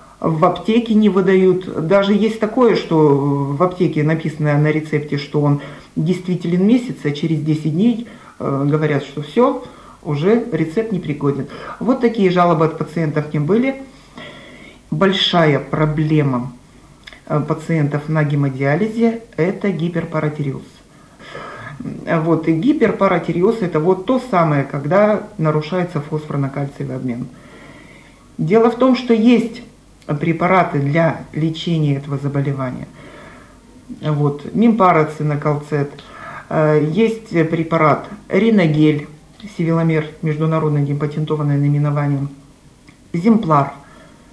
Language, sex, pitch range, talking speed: Russian, male, 150-195 Hz, 100 wpm